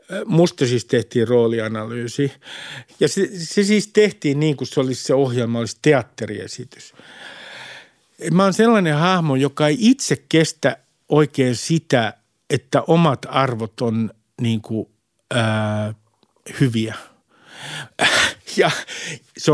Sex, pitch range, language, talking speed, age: male, 120-155 Hz, Finnish, 110 wpm, 50-69